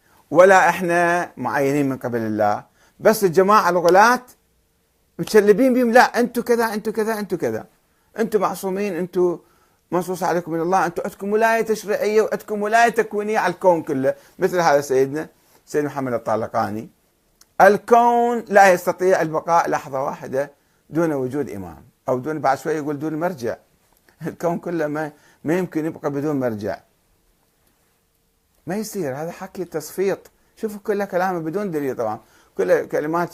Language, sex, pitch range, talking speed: Arabic, male, 140-200 Hz, 140 wpm